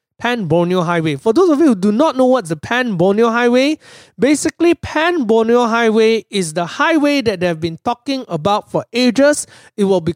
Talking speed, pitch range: 190 wpm, 175-250 Hz